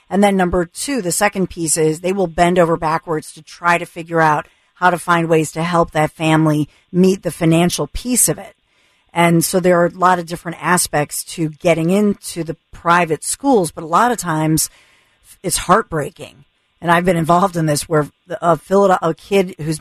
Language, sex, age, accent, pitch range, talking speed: English, female, 40-59, American, 165-200 Hz, 205 wpm